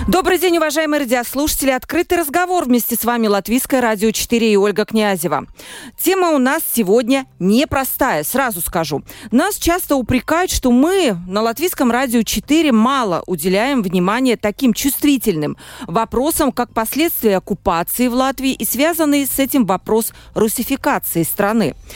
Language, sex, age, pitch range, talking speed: Russian, female, 40-59, 200-275 Hz, 135 wpm